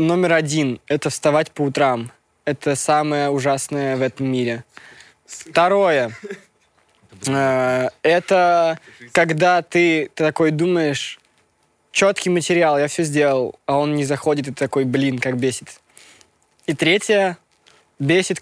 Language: Russian